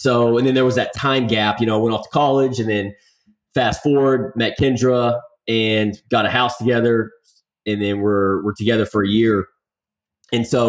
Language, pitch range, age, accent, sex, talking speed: English, 110-140 Hz, 30-49, American, male, 200 wpm